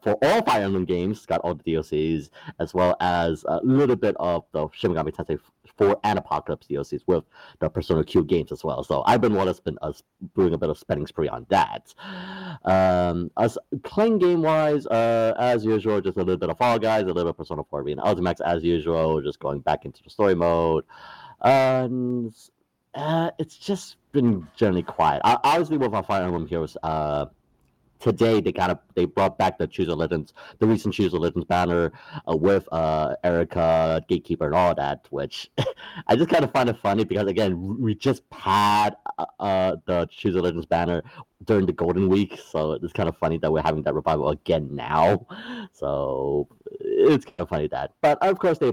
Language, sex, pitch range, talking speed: English, male, 85-135 Hz, 200 wpm